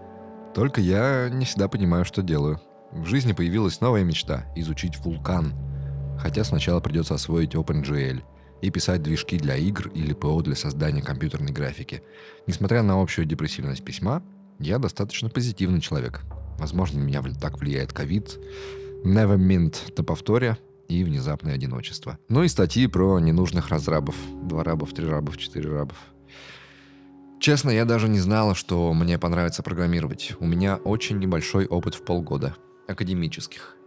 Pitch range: 80-105 Hz